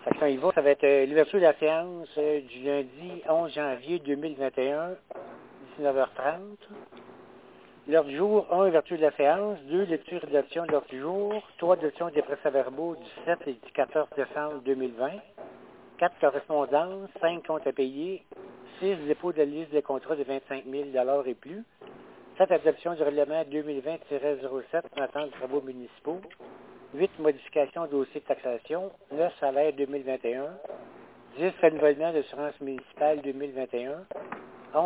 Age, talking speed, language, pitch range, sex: 60-79, 145 wpm, French, 140-170 Hz, male